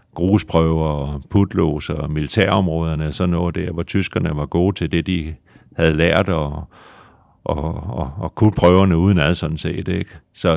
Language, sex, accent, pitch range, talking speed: Danish, male, native, 80-95 Hz, 170 wpm